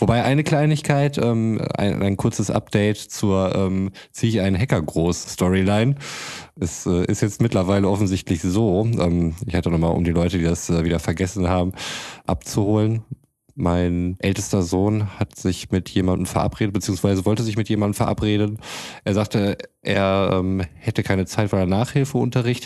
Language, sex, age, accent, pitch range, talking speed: German, male, 20-39, German, 90-115 Hz, 155 wpm